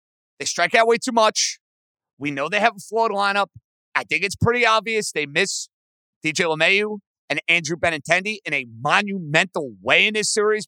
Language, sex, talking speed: English, male, 180 wpm